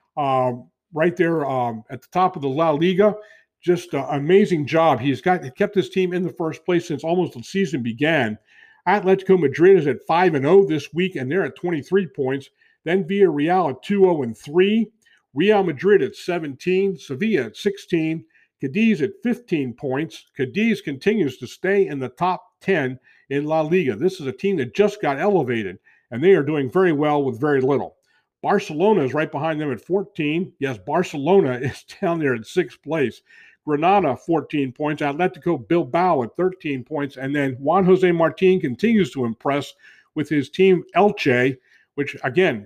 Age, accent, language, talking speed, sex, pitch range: 50-69, American, English, 175 wpm, male, 140-190 Hz